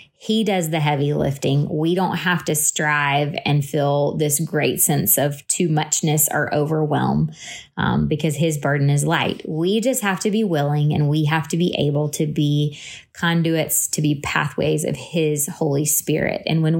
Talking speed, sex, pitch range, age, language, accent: 180 wpm, female, 145-180 Hz, 20-39, English, American